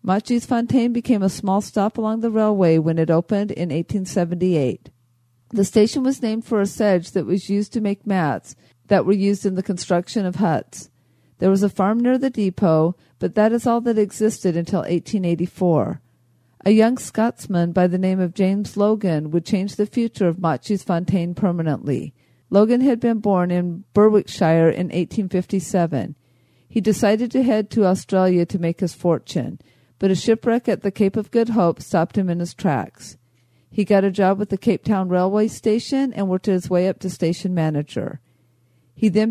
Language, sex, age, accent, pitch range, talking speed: English, female, 50-69, American, 170-210 Hz, 180 wpm